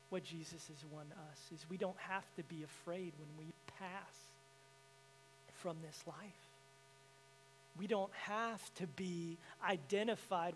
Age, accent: 40-59, American